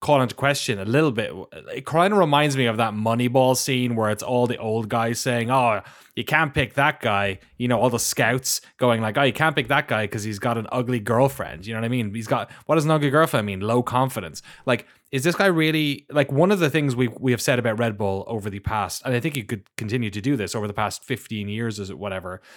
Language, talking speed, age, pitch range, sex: English, 260 wpm, 20-39, 105-135 Hz, male